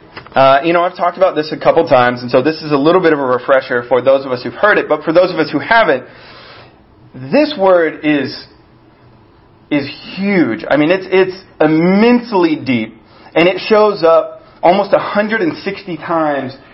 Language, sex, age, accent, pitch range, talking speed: English, male, 30-49, American, 125-185 Hz, 185 wpm